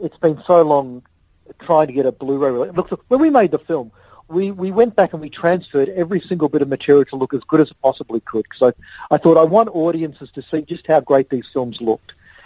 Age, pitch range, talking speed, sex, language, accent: 40-59, 135-170 Hz, 240 wpm, male, English, Australian